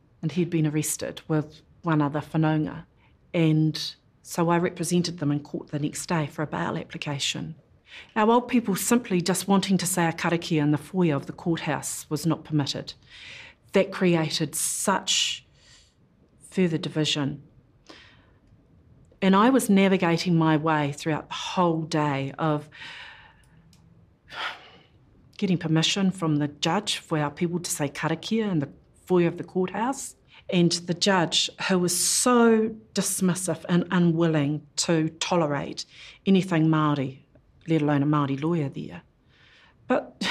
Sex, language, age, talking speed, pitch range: female, English, 40-59, 140 wpm, 150-190 Hz